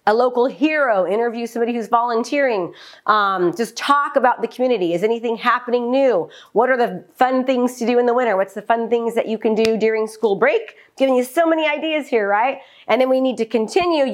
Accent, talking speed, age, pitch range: American, 215 wpm, 40-59, 210-245 Hz